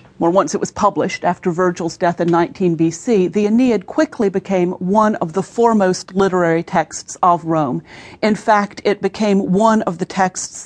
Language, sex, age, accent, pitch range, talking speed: English, female, 40-59, American, 170-205 Hz, 175 wpm